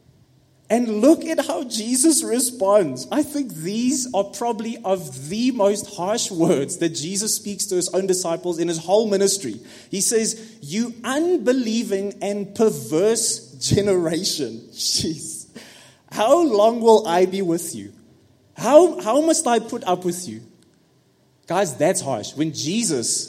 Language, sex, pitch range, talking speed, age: English, male, 155-230 Hz, 140 wpm, 20-39